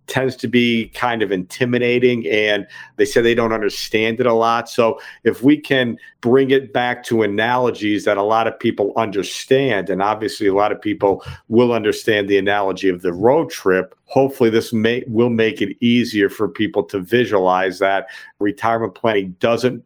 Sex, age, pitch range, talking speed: male, 50-69, 105-125 Hz, 180 wpm